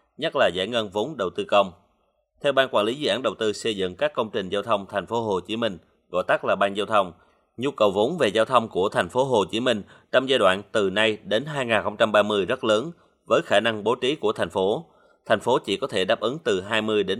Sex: male